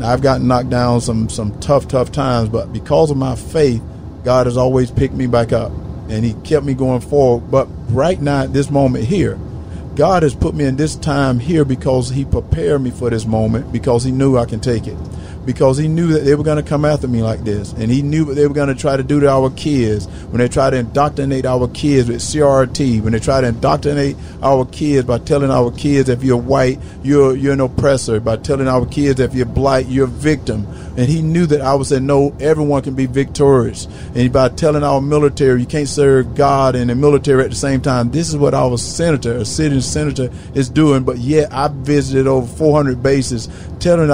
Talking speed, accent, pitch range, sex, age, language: 225 wpm, American, 120-140 Hz, male, 50-69, English